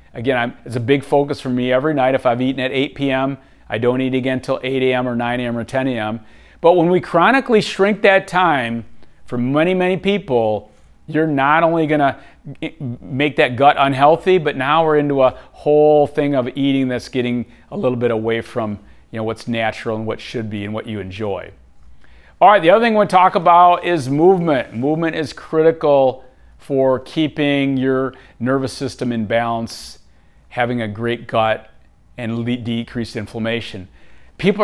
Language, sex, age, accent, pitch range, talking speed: English, male, 40-59, American, 115-150 Hz, 185 wpm